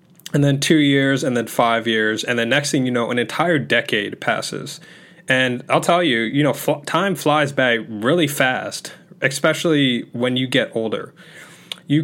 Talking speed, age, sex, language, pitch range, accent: 180 wpm, 10-29, male, English, 120-165 Hz, American